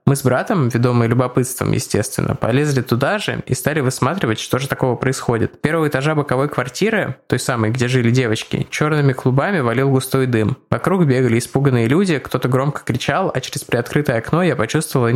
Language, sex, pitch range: Russian, male, 125-150 Hz